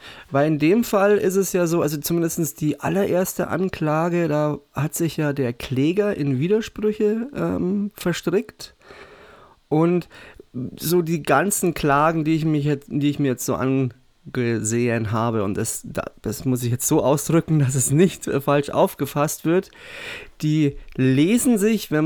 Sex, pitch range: male, 135-170 Hz